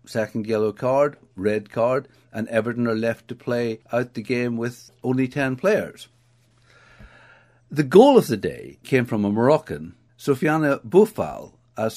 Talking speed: 150 wpm